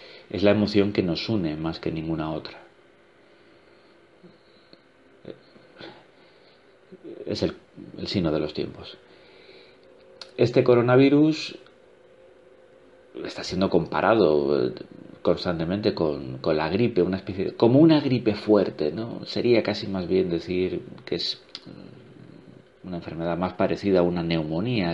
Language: Spanish